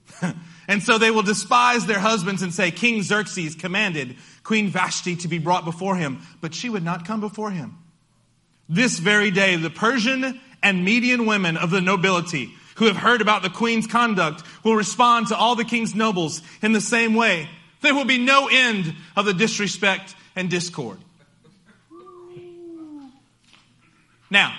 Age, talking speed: 30-49, 160 wpm